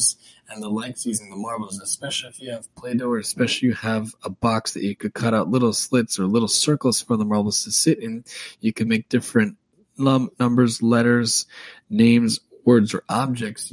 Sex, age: male, 20-39